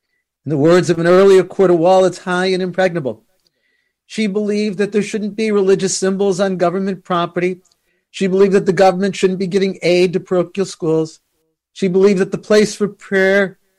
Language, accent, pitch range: English, American, 170-215 Hz